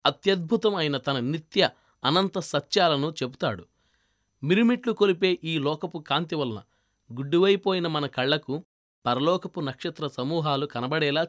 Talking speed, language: 95 wpm, Telugu